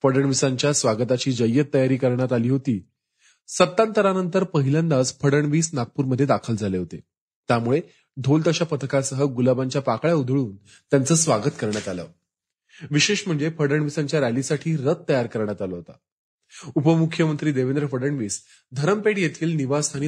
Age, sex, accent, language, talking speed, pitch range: 30-49, male, native, Marathi, 80 wpm, 110-155 Hz